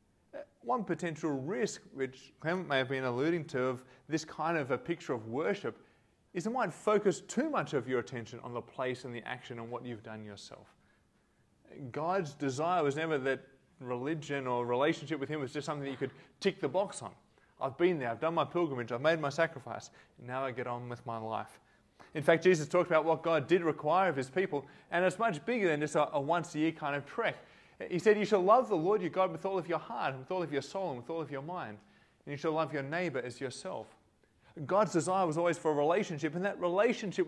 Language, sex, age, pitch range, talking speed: English, male, 20-39, 130-175 Hz, 235 wpm